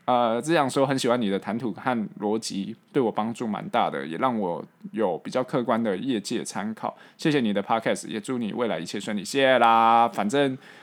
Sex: male